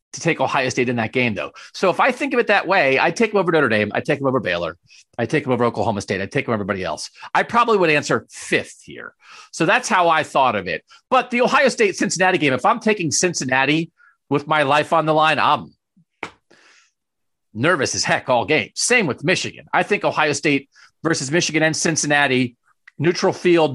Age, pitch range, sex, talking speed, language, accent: 40-59, 130-175 Hz, male, 215 wpm, English, American